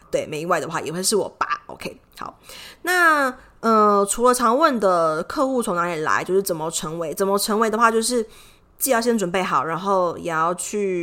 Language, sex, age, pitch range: Chinese, female, 20-39, 175-225 Hz